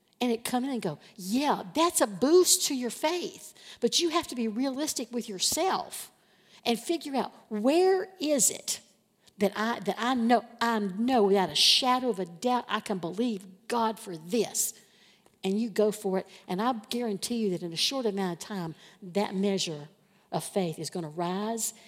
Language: English